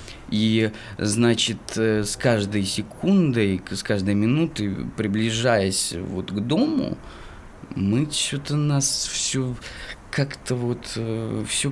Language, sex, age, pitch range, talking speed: Russian, male, 20-39, 95-115 Hz, 95 wpm